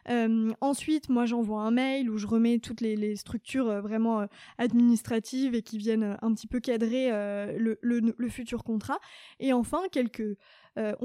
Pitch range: 220-255 Hz